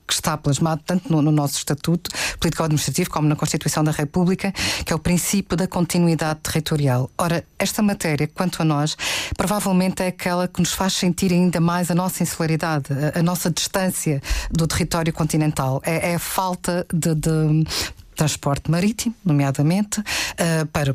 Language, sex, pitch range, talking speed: Portuguese, female, 155-185 Hz, 150 wpm